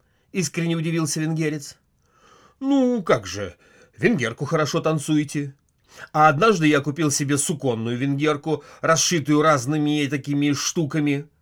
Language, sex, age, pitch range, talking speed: Russian, male, 30-49, 120-165 Hz, 115 wpm